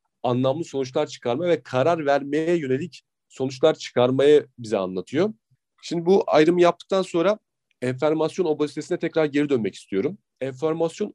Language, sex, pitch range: Turkish, male, 125-160 Hz